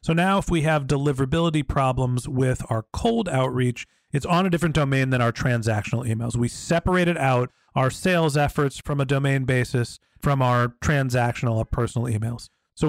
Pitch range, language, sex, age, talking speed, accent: 125-155 Hz, English, male, 40-59, 170 wpm, American